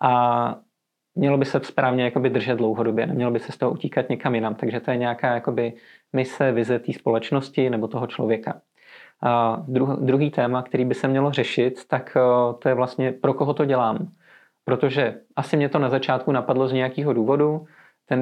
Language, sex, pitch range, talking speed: Czech, male, 125-140 Hz, 170 wpm